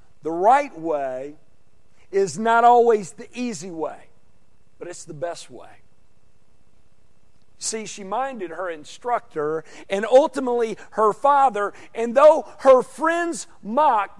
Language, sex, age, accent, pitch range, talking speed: English, male, 50-69, American, 180-260 Hz, 120 wpm